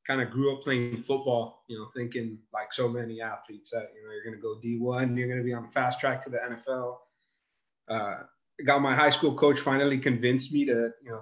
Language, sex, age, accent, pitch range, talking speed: English, male, 30-49, American, 115-135 Hz, 235 wpm